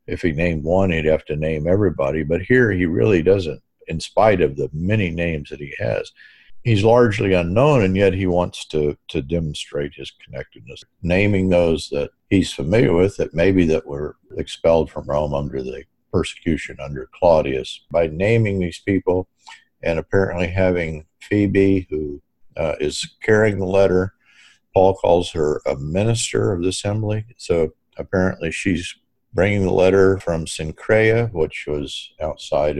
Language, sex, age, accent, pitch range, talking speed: English, male, 50-69, American, 80-100 Hz, 155 wpm